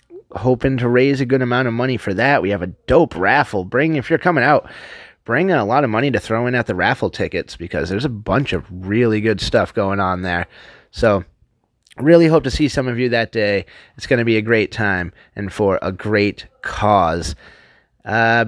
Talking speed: 220 wpm